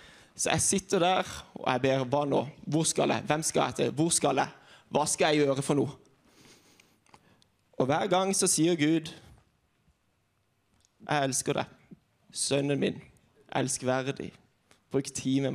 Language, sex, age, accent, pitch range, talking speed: English, male, 20-39, Swedish, 145-180 Hz, 145 wpm